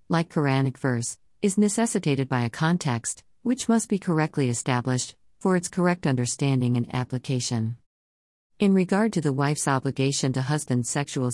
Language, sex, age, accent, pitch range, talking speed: English, female, 50-69, American, 130-160 Hz, 150 wpm